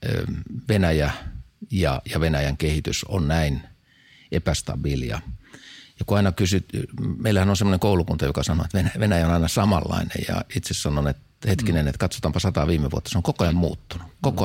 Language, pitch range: Finnish, 80-100 Hz